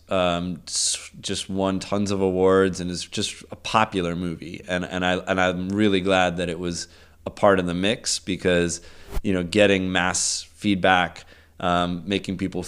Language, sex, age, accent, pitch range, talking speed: English, male, 30-49, American, 85-95 Hz, 170 wpm